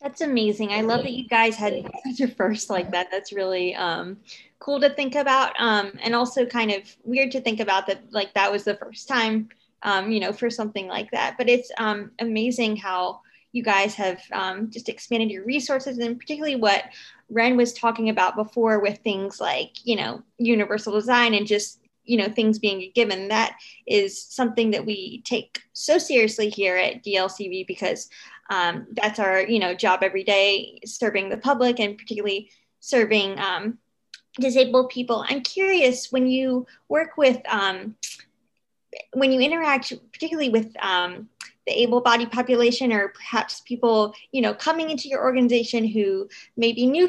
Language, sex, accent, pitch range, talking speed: English, female, American, 210-255 Hz, 170 wpm